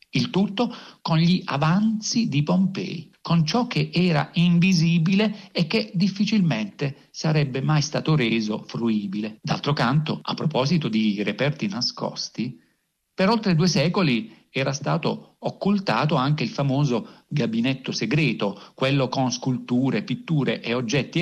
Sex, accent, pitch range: male, native, 140-200 Hz